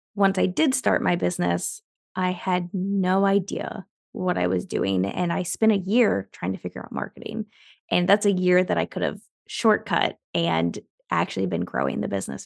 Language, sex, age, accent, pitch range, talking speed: English, female, 20-39, American, 165-210 Hz, 190 wpm